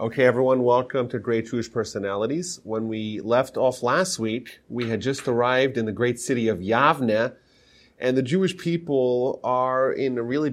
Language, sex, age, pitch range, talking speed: English, male, 30-49, 115-135 Hz, 175 wpm